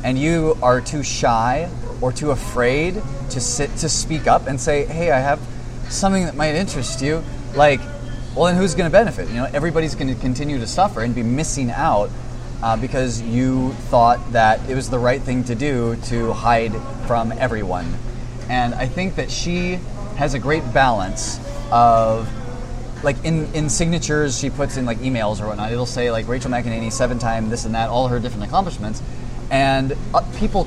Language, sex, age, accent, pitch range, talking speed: English, male, 30-49, American, 120-150 Hz, 185 wpm